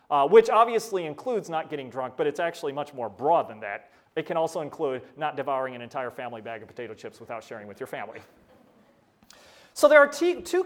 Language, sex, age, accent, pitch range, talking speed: English, male, 30-49, American, 155-240 Hz, 210 wpm